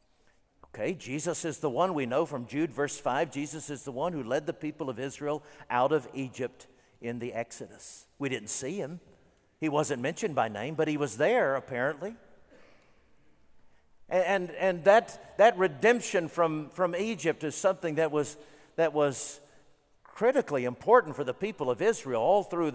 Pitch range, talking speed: 135-175 Hz, 170 wpm